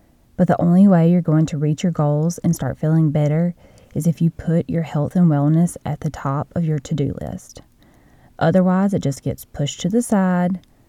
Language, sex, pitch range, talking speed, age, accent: English, female, 150-180 Hz, 205 wpm, 20-39, American